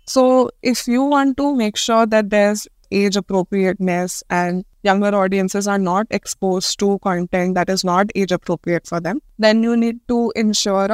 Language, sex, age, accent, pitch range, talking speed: English, female, 20-39, Indian, 195-230 Hz, 170 wpm